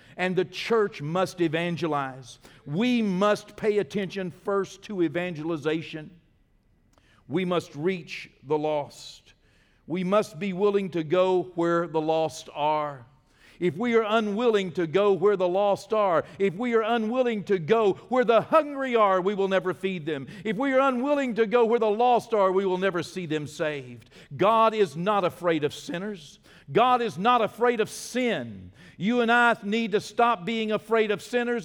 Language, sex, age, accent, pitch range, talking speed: English, male, 50-69, American, 180-240 Hz, 170 wpm